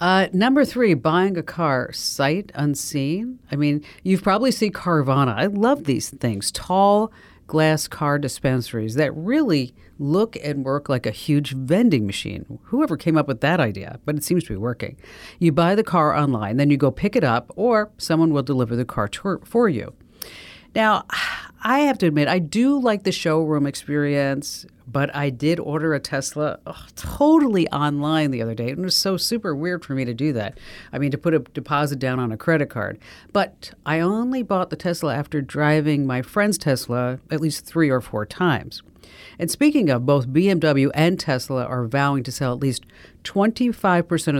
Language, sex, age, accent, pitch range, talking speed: English, female, 50-69, American, 130-180 Hz, 185 wpm